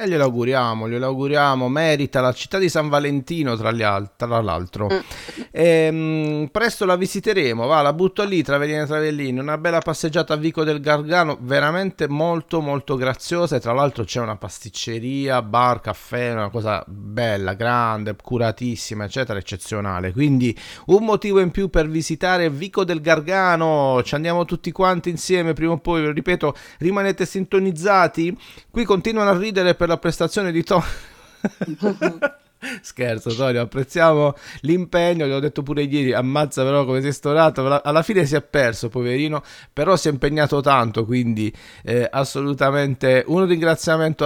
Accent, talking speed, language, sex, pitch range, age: native, 150 wpm, Italian, male, 125-175 Hz, 40-59